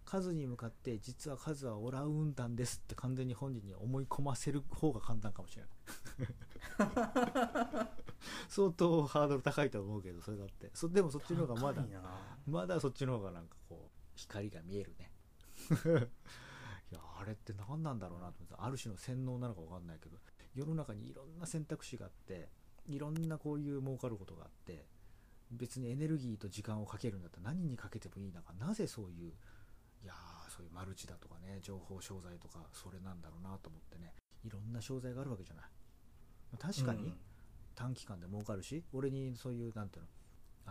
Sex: male